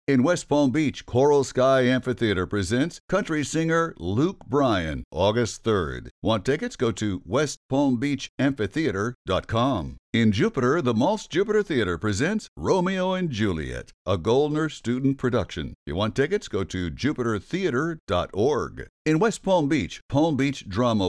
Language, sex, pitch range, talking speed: English, male, 105-155 Hz, 130 wpm